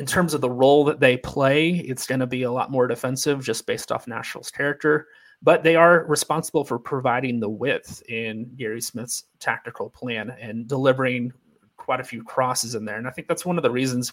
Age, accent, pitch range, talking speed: 30-49, American, 120-150 Hz, 210 wpm